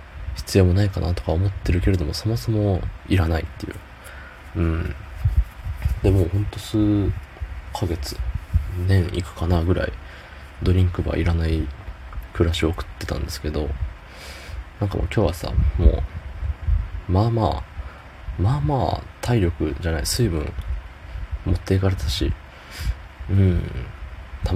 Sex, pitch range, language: male, 75-95 Hz, Japanese